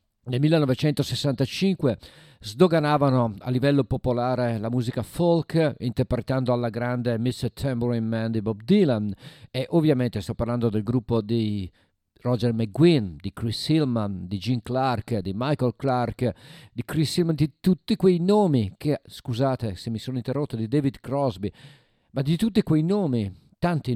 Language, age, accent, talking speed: Italian, 50-69, native, 145 wpm